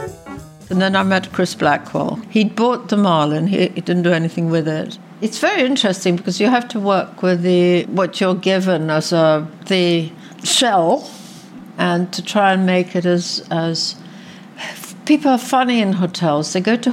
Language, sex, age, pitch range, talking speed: English, female, 60-79, 165-200 Hz, 175 wpm